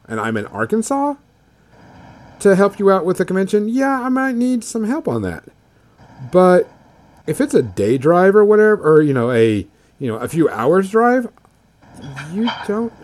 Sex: male